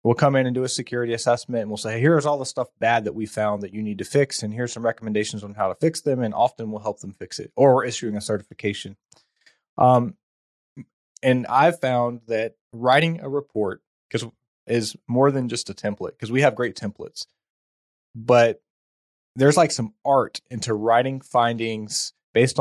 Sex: male